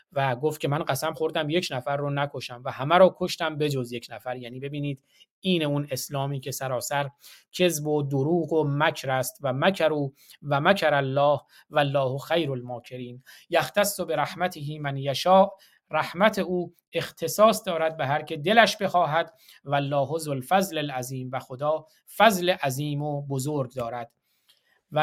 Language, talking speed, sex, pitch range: Persian, 155 wpm, male, 145-180 Hz